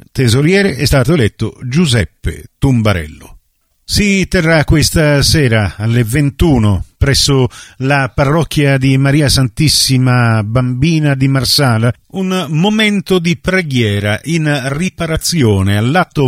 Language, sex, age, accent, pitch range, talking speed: Italian, male, 50-69, native, 125-170 Hz, 105 wpm